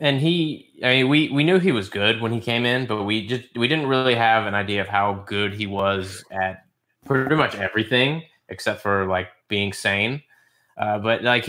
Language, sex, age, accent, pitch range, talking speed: English, male, 20-39, American, 100-115 Hz, 215 wpm